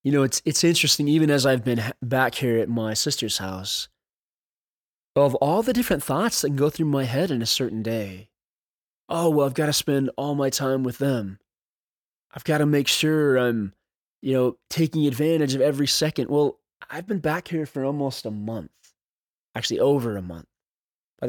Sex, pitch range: male, 125-165 Hz